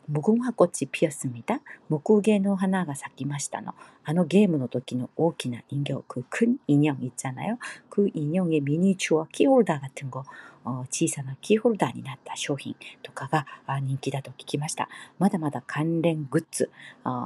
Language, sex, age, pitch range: Korean, female, 40-59, 140-200 Hz